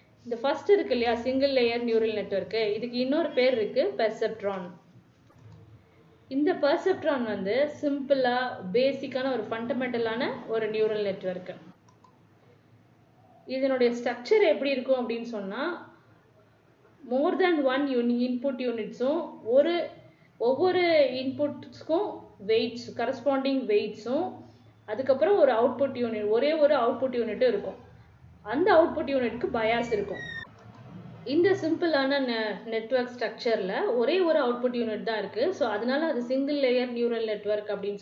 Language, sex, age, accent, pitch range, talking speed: Tamil, female, 20-39, native, 215-280 Hz, 120 wpm